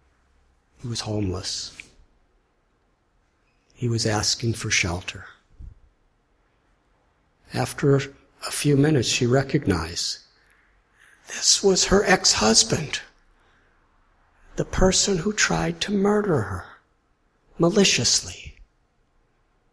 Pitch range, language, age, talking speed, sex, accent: 100-150 Hz, English, 60-79, 80 wpm, male, American